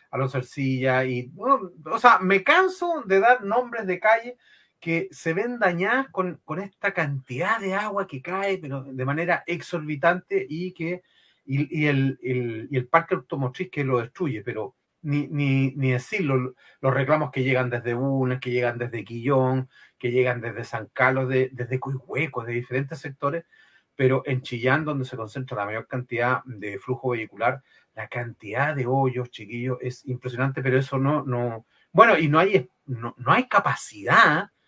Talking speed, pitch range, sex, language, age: 170 wpm, 125-170 Hz, male, Spanish, 30-49